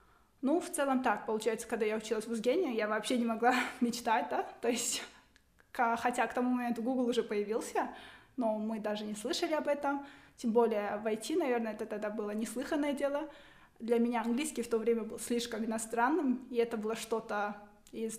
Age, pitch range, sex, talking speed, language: 20-39, 225-245 Hz, female, 185 wpm, Russian